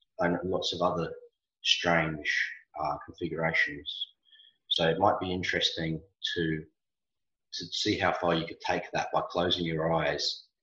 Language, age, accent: English, 30-49, Australian